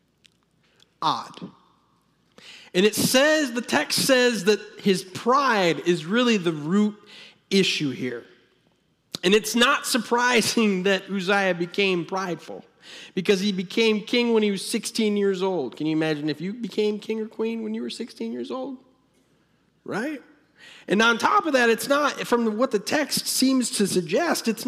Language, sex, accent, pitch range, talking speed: English, male, American, 180-230 Hz, 155 wpm